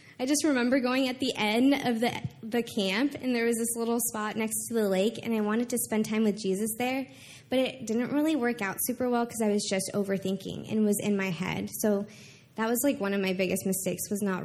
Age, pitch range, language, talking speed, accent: 20-39, 225-305 Hz, English, 245 wpm, American